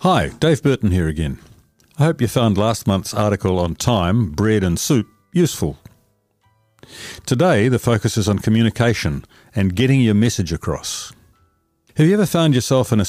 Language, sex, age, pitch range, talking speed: English, male, 50-69, 100-125 Hz, 165 wpm